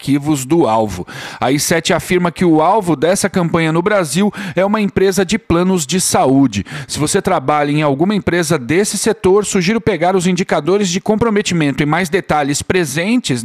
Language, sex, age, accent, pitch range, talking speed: Portuguese, male, 40-59, Brazilian, 150-195 Hz, 165 wpm